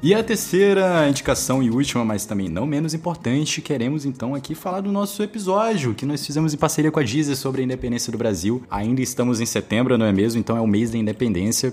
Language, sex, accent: Portuguese, male, Brazilian